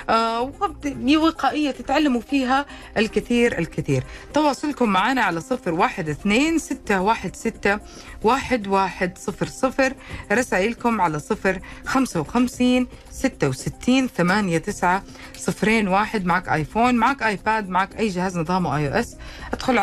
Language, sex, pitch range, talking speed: Arabic, female, 165-230 Hz, 100 wpm